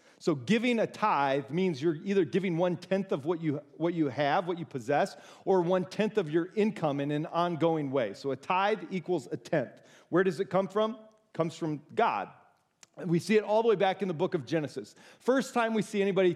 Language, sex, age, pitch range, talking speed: English, male, 40-59, 160-200 Hz, 220 wpm